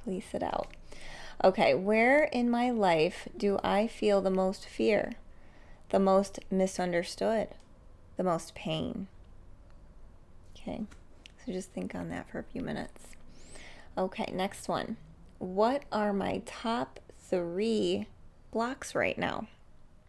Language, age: English, 20-39